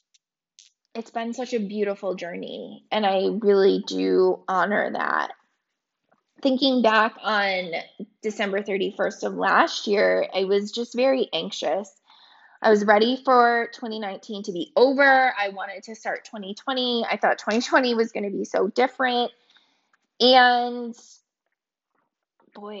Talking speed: 130 wpm